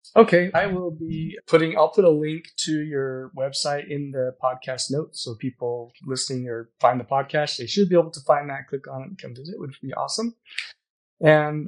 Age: 30-49